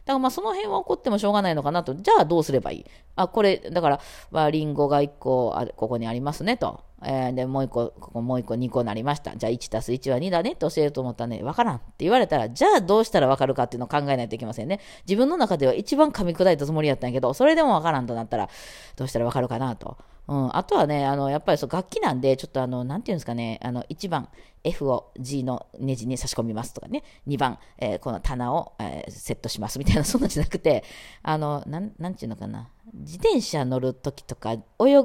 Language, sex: Japanese, female